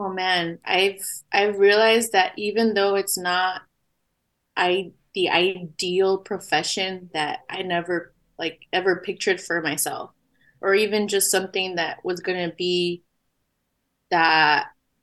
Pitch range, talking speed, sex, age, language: 175-210 Hz, 125 wpm, female, 20-39, English